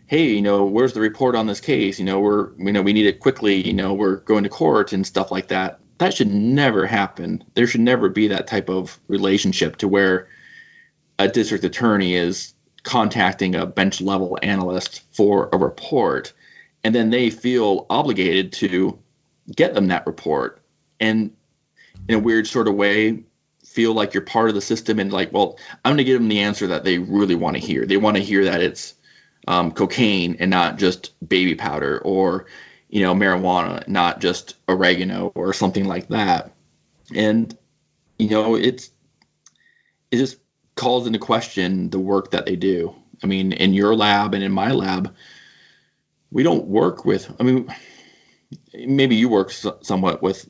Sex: male